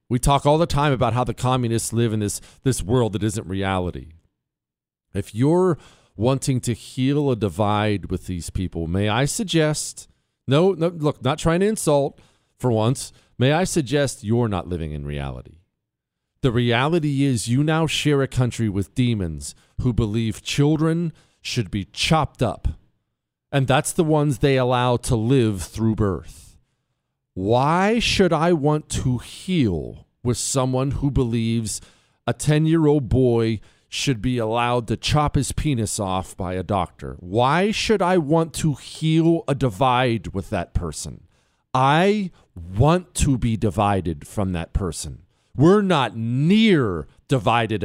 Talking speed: 150 wpm